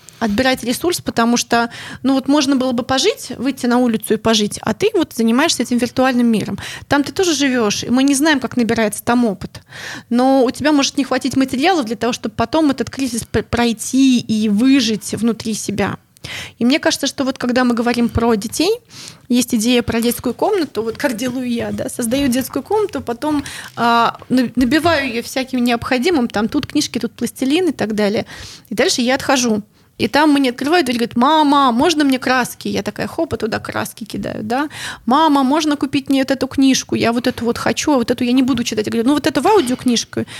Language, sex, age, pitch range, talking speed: Russian, female, 20-39, 230-285 Hz, 200 wpm